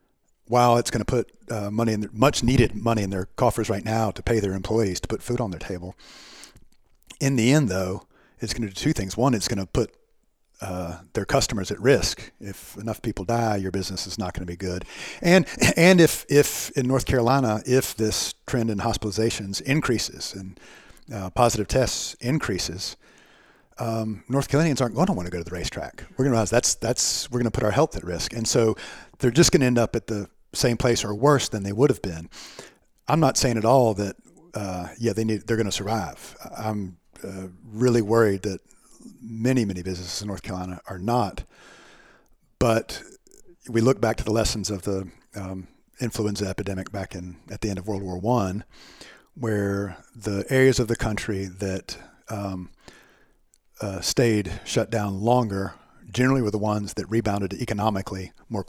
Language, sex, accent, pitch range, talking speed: English, male, American, 95-120 Hz, 190 wpm